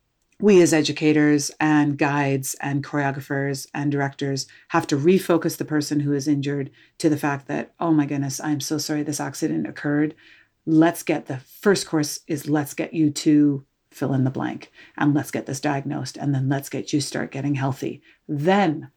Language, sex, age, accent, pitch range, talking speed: English, female, 40-59, American, 140-160 Hz, 185 wpm